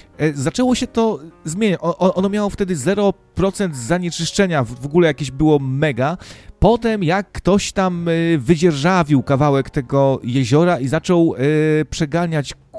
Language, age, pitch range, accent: Polish, 40-59, 140-190 Hz, native